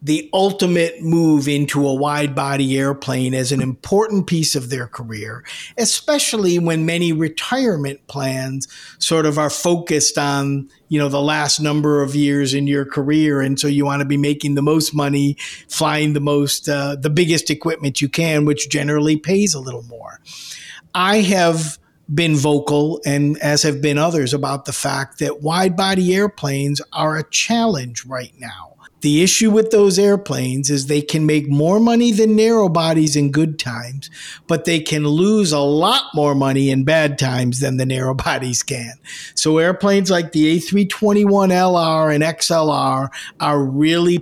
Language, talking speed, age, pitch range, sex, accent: English, 165 wpm, 50-69, 140-170 Hz, male, American